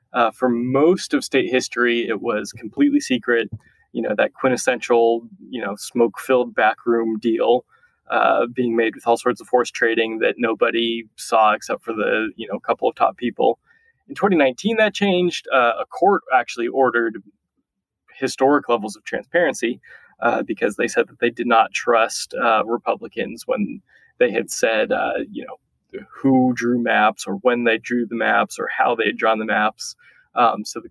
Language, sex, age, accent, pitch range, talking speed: English, male, 20-39, American, 115-175 Hz, 175 wpm